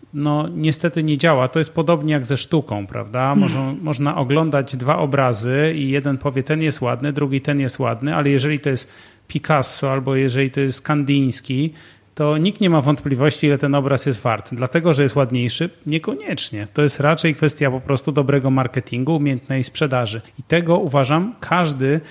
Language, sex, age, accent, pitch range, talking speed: Polish, male, 30-49, native, 130-155 Hz, 175 wpm